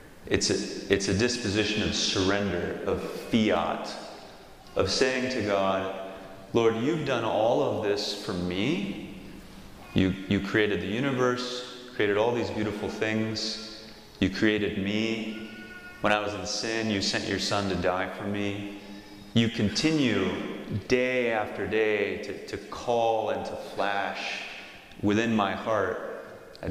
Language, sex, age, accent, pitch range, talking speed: English, male, 30-49, American, 100-115 Hz, 135 wpm